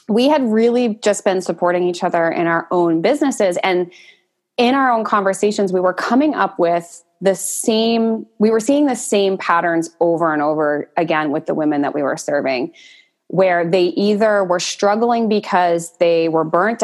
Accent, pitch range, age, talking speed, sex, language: American, 170-215 Hz, 20-39, 180 wpm, female, English